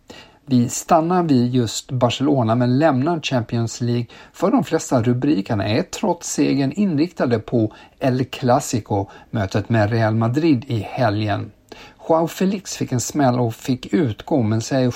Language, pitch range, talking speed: Swedish, 115-140 Hz, 140 wpm